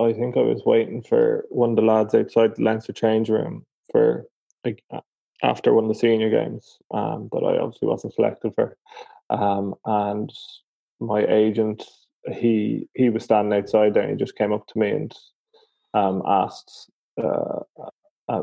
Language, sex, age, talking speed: English, male, 20-39, 160 wpm